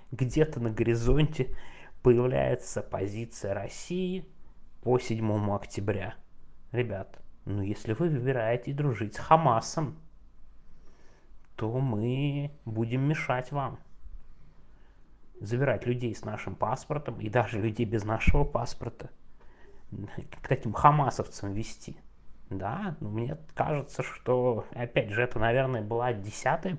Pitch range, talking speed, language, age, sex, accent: 110-140 Hz, 110 wpm, Russian, 20-39, male, native